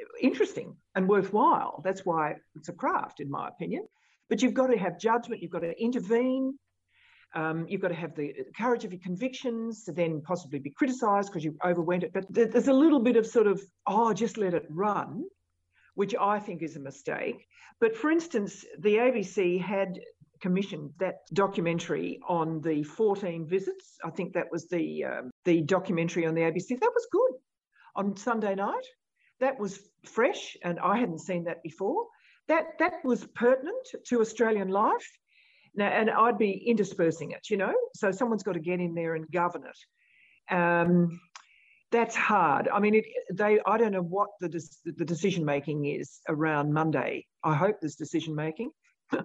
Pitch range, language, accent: 170-240 Hz, English, Australian